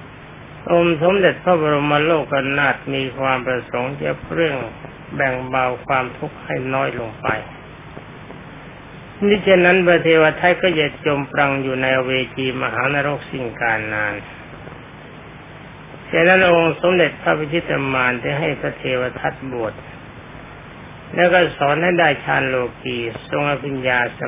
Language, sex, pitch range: Thai, male, 130-160 Hz